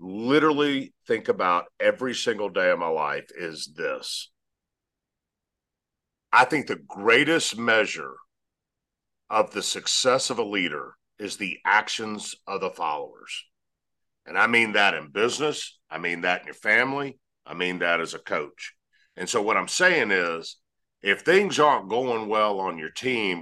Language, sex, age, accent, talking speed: English, male, 50-69, American, 155 wpm